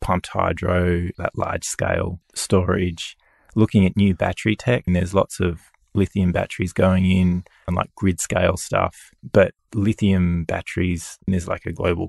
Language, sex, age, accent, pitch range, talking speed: English, male, 20-39, Australian, 90-100 Hz, 155 wpm